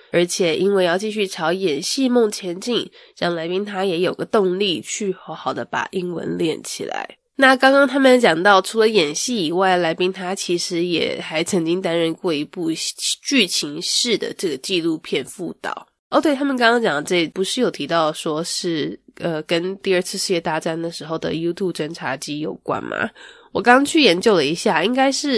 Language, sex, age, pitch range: English, female, 20-39, 170-240 Hz